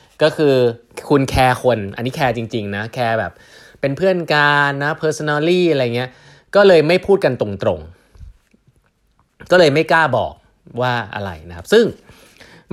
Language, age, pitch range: Thai, 20-39, 105-145 Hz